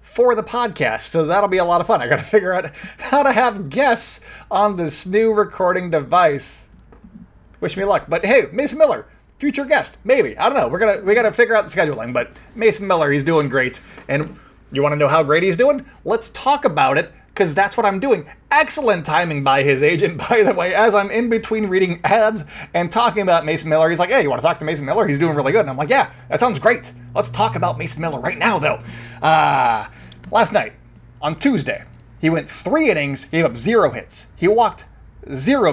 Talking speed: 225 wpm